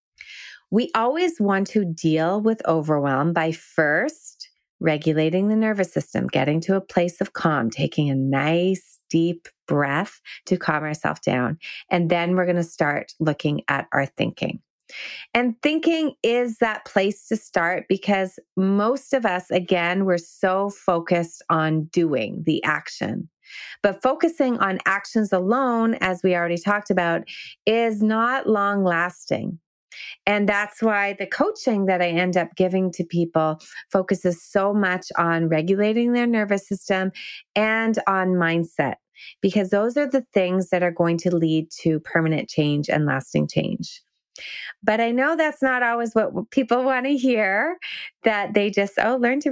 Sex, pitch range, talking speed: female, 170-225 Hz, 155 wpm